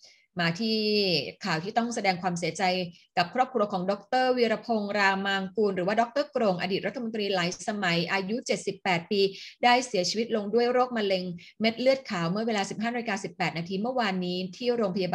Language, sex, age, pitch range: Thai, female, 20-39, 180-220 Hz